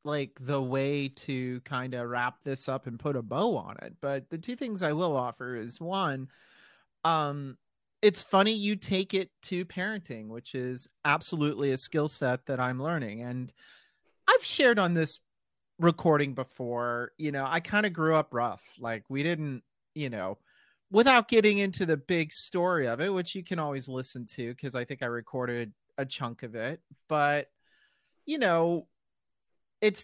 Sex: male